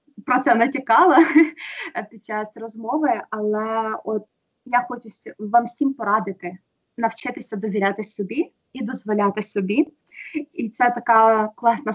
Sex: female